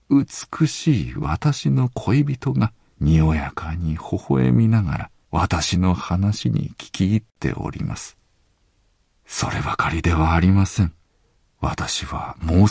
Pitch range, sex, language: 75-105 Hz, male, Japanese